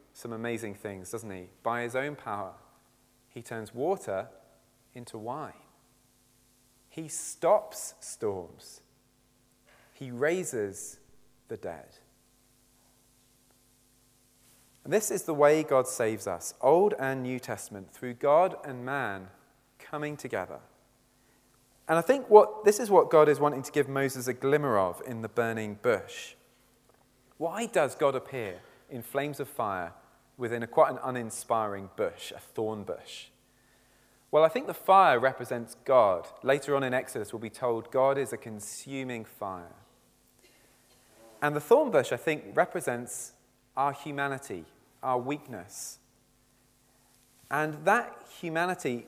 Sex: male